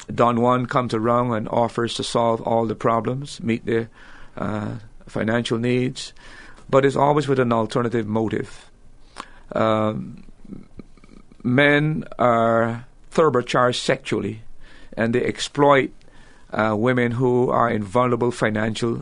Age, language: 50-69, English